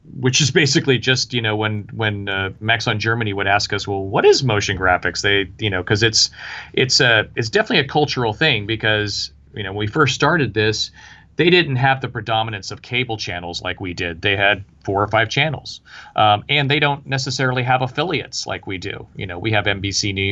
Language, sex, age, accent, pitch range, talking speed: English, male, 40-59, American, 100-130 Hz, 215 wpm